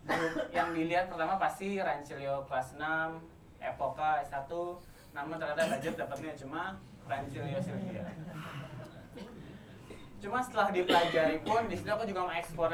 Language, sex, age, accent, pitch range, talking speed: Indonesian, male, 20-39, native, 145-180 Hz, 120 wpm